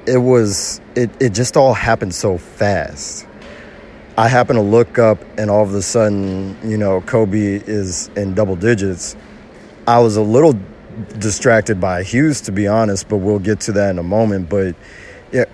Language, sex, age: English, male, 30-49